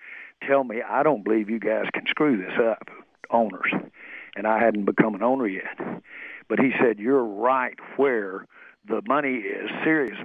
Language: English